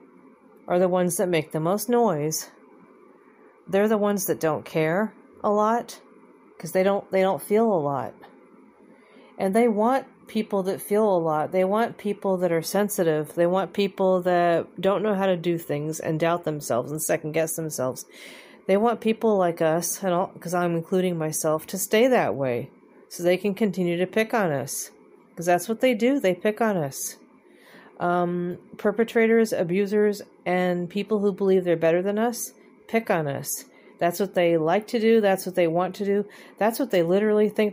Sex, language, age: female, English, 40-59